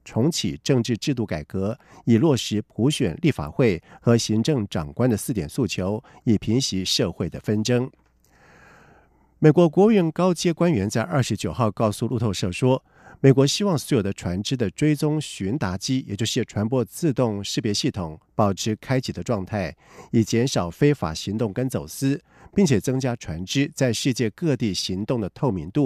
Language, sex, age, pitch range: German, male, 50-69, 105-140 Hz